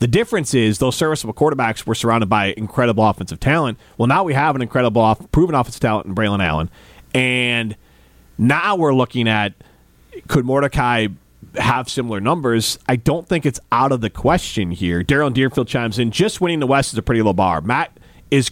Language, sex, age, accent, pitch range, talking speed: English, male, 40-59, American, 110-155 Hz, 190 wpm